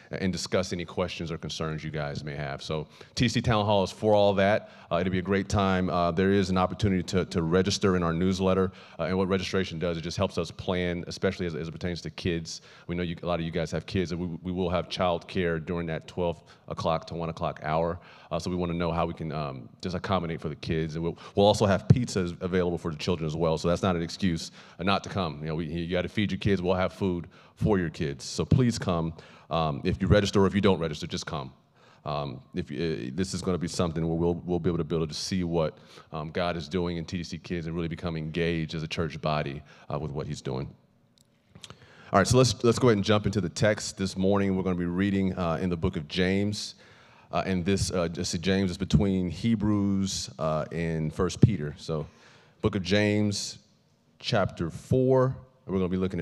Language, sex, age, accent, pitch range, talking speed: English, male, 30-49, American, 85-95 Hz, 245 wpm